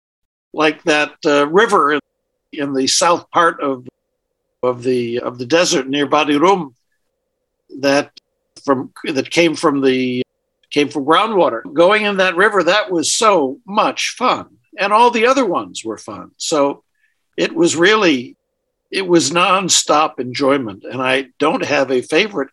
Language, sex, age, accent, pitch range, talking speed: English, male, 60-79, American, 140-185 Hz, 145 wpm